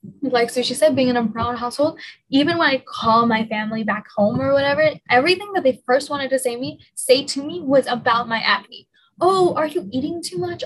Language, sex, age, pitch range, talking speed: English, female, 10-29, 230-285 Hz, 225 wpm